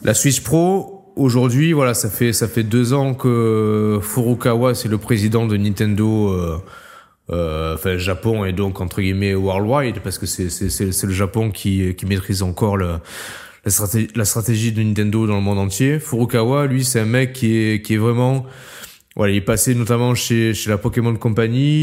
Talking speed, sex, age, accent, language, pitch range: 190 wpm, male, 20-39, French, French, 100-125 Hz